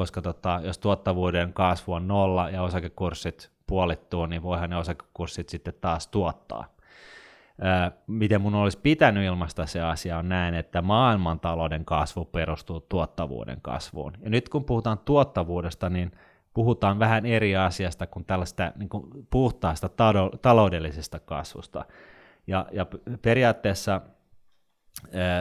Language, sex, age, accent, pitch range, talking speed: Finnish, male, 30-49, native, 85-105 Hz, 130 wpm